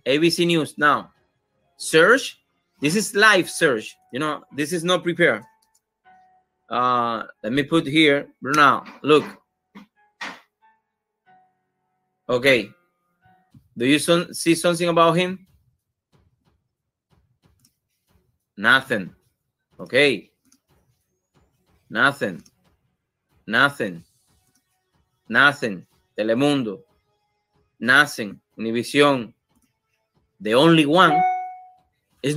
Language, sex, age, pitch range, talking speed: English, male, 30-49, 140-200 Hz, 75 wpm